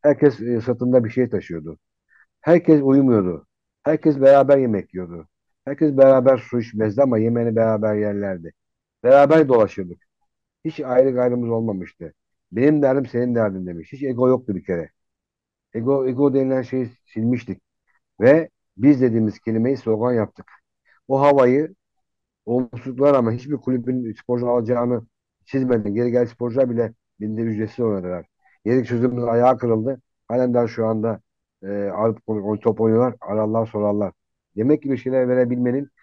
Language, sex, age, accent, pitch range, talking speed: Turkish, male, 60-79, native, 105-130 Hz, 135 wpm